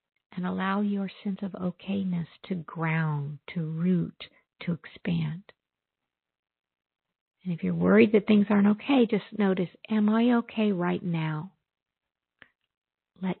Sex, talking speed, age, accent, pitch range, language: female, 125 wpm, 50-69, American, 180-215 Hz, English